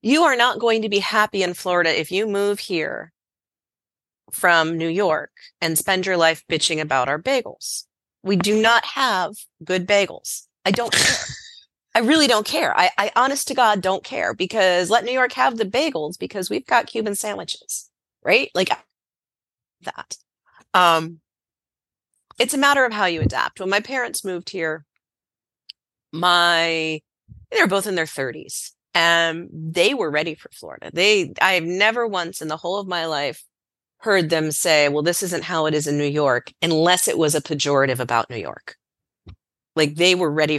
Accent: American